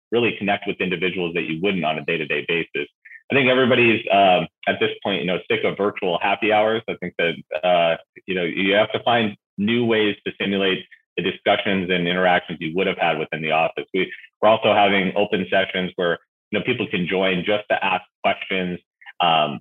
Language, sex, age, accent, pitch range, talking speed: English, male, 30-49, American, 90-105 Hz, 200 wpm